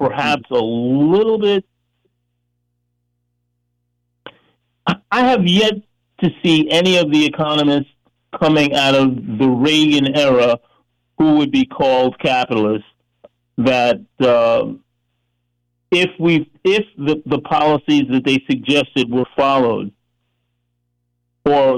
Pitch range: 100-145 Hz